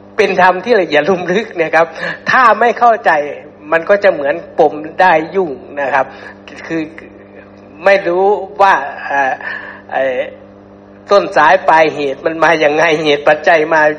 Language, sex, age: Thai, male, 60-79